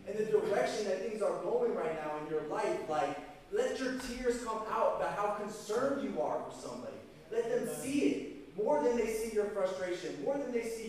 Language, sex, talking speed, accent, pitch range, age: English, male, 215 wpm, American, 150-235 Hz, 20-39